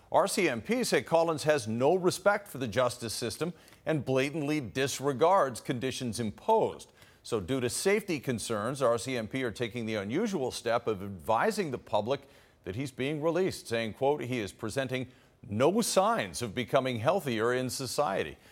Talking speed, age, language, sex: 150 wpm, 50-69, English, male